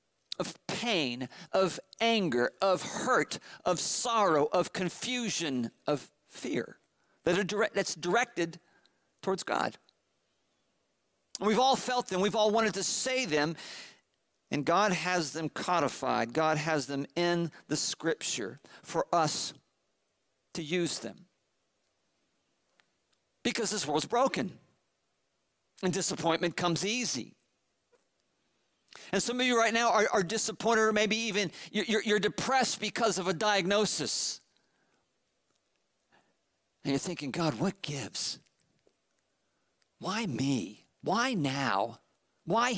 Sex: male